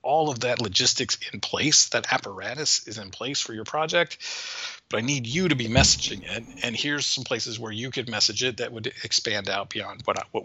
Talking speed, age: 220 wpm, 40-59